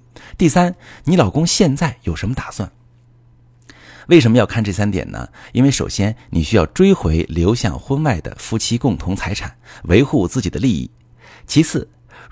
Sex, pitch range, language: male, 95-125 Hz, Chinese